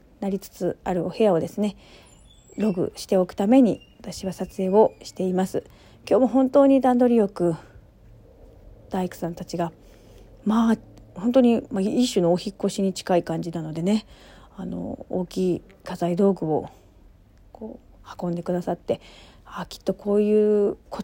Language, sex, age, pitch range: Japanese, female, 40-59, 175-210 Hz